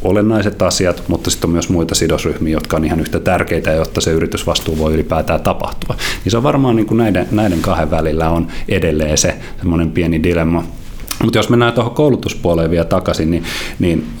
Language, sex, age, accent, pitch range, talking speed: Finnish, male, 30-49, native, 80-100 Hz, 185 wpm